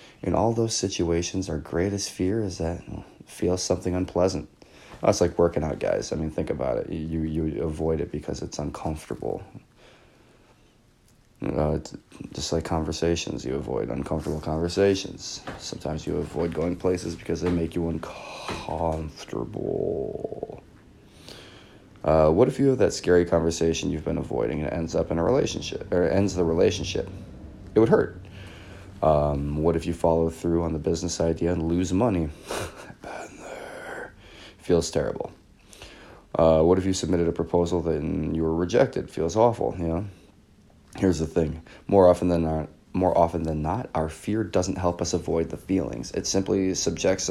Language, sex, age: English, male, 30-49